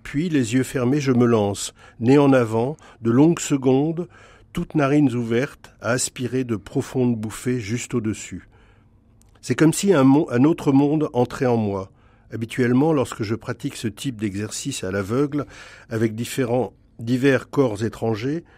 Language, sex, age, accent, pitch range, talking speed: French, male, 50-69, French, 110-140 Hz, 150 wpm